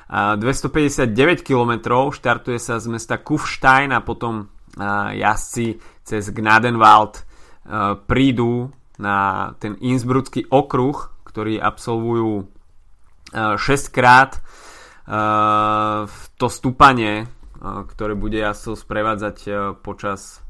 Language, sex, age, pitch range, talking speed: Slovak, male, 20-39, 105-125 Hz, 80 wpm